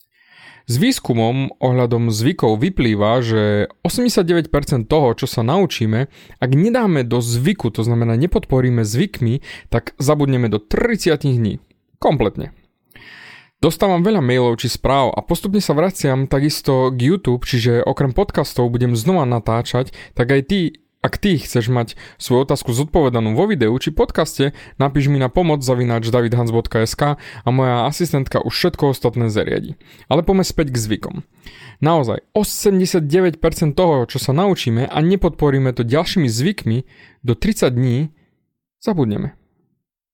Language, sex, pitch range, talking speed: Slovak, male, 120-165 Hz, 135 wpm